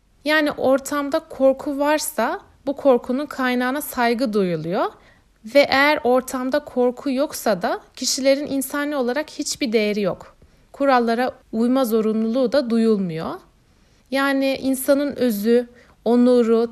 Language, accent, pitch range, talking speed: Turkish, native, 205-260 Hz, 110 wpm